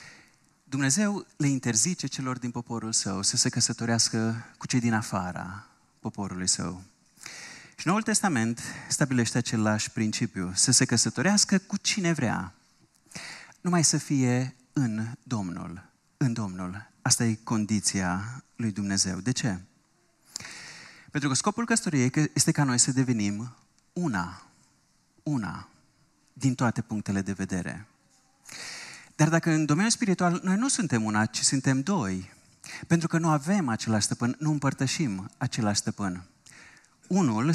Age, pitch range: 30-49, 110-155 Hz